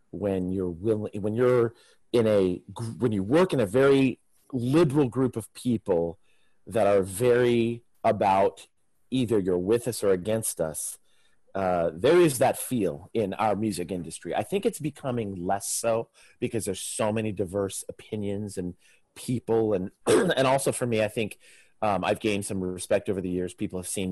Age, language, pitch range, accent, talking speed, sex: 40-59, English, 95-115 Hz, American, 170 wpm, male